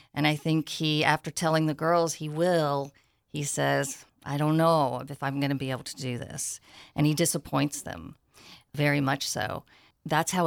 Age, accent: 40-59, American